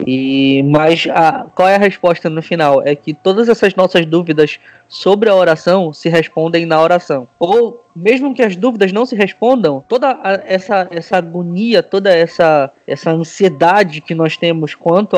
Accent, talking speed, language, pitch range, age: Brazilian, 160 wpm, Portuguese, 150-180 Hz, 20-39